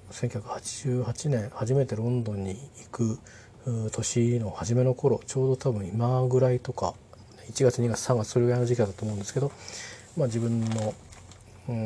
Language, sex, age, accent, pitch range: Japanese, male, 40-59, native, 105-125 Hz